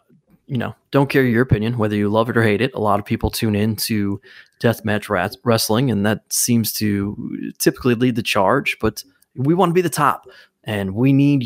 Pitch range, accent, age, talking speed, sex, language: 110-140 Hz, American, 20-39, 215 wpm, male, English